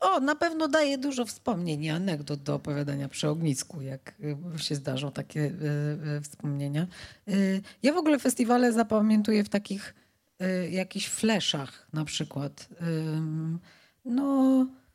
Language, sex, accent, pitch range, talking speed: Polish, female, native, 160-225 Hz, 135 wpm